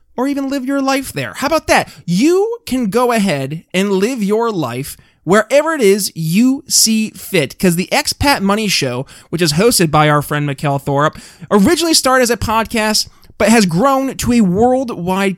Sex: male